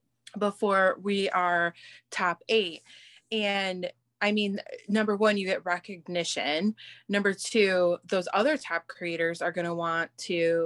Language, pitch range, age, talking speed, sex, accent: English, 170-205 Hz, 20-39, 135 wpm, female, American